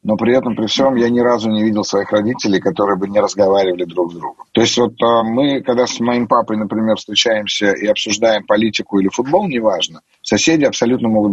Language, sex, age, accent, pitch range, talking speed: Russian, male, 30-49, native, 105-130 Hz, 200 wpm